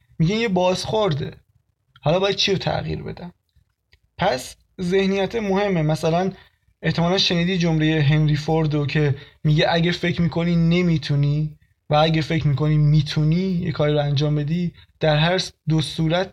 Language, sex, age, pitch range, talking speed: Persian, male, 20-39, 150-190 Hz, 135 wpm